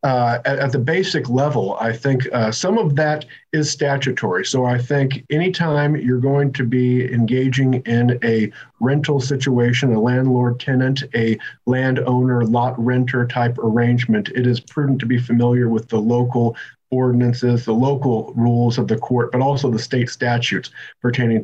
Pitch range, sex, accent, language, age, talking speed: 120-140 Hz, male, American, English, 50-69, 160 wpm